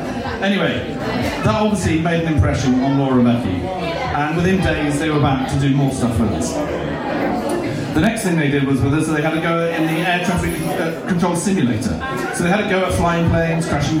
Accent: British